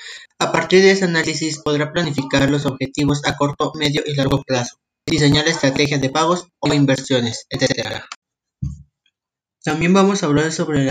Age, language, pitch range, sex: 30-49, Spanish, 135-160 Hz, male